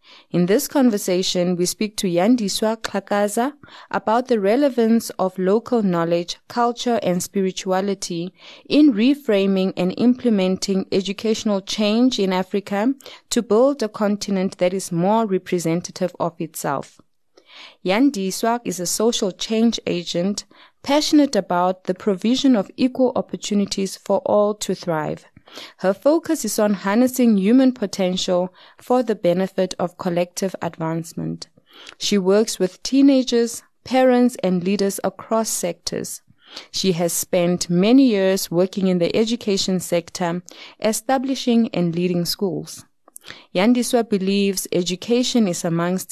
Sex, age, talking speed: female, 20-39, 120 wpm